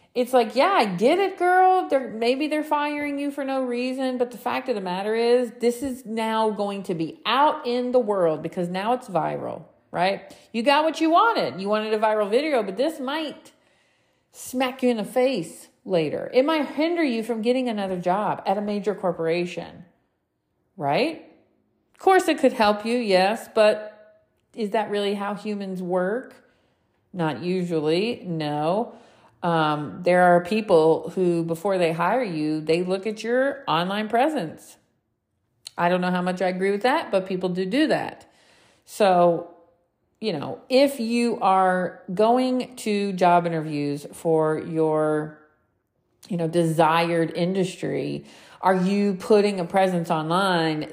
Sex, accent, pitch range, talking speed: female, American, 170-245 Hz, 160 wpm